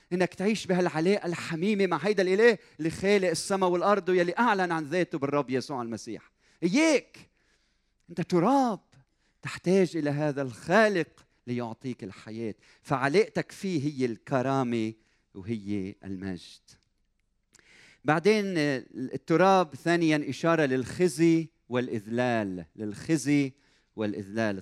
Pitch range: 125-180 Hz